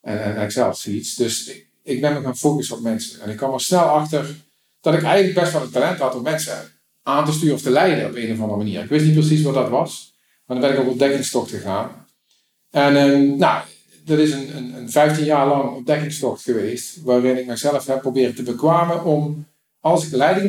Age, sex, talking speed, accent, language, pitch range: 50-69, male, 225 wpm, Dutch, Dutch, 120-155 Hz